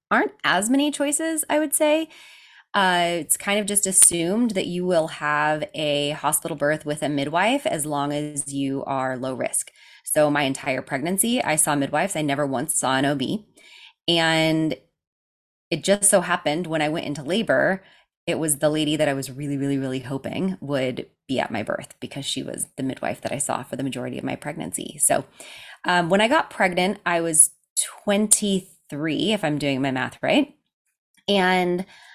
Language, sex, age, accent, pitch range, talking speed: English, female, 20-39, American, 145-210 Hz, 185 wpm